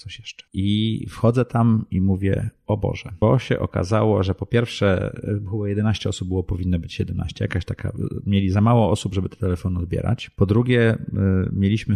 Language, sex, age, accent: Polish, male, 30-49, native